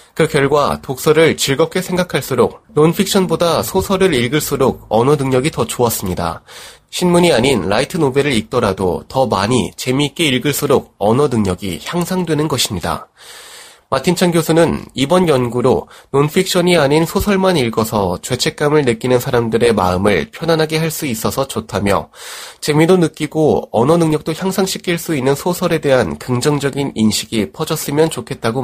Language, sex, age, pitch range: Korean, male, 30-49, 115-160 Hz